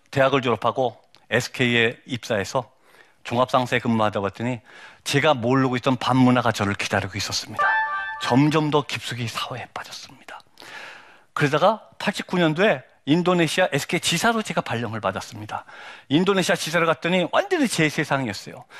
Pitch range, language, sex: 120-185 Hz, Korean, male